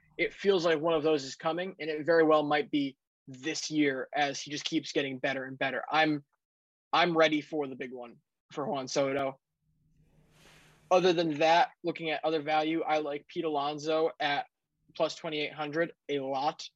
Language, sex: English, male